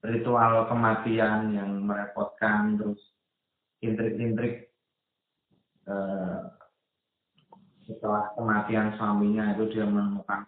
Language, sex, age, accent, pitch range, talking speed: Indonesian, male, 20-39, native, 105-120 Hz, 75 wpm